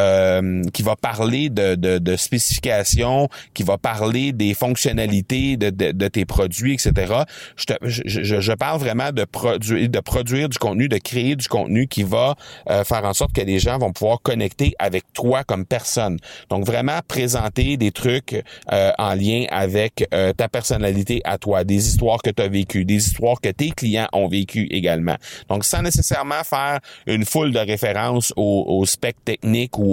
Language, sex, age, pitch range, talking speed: French, male, 30-49, 95-120 Hz, 185 wpm